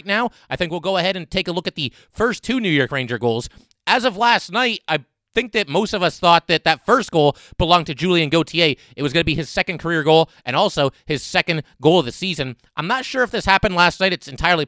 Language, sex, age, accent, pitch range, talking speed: English, male, 30-49, American, 145-185 Hz, 265 wpm